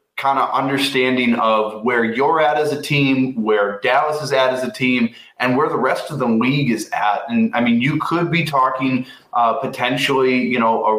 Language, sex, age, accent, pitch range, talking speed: English, male, 20-39, American, 120-160 Hz, 210 wpm